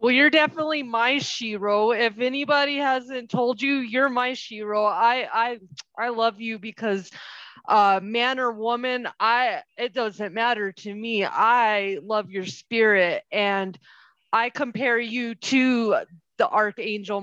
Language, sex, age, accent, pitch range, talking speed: English, female, 20-39, American, 210-255 Hz, 140 wpm